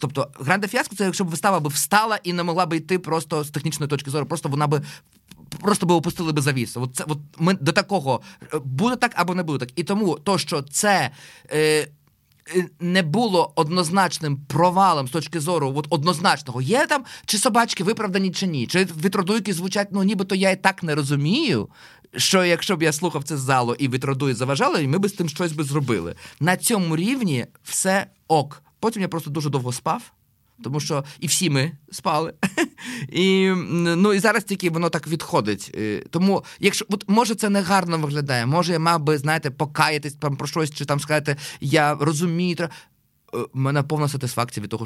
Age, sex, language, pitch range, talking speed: 20-39, male, Ukrainian, 135-185 Hz, 185 wpm